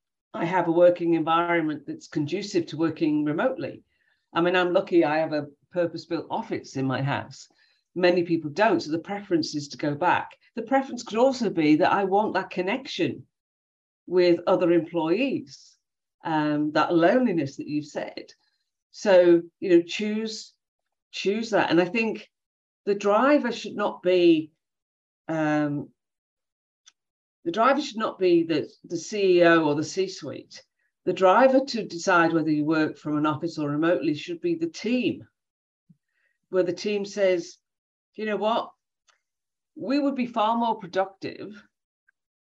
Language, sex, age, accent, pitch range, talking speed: English, female, 50-69, British, 155-215 Hz, 150 wpm